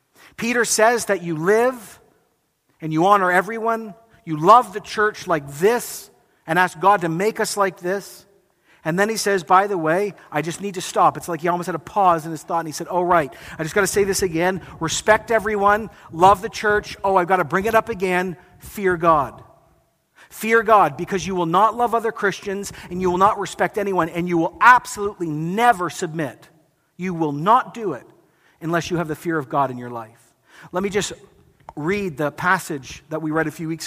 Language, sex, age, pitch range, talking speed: English, male, 50-69, 160-200 Hz, 210 wpm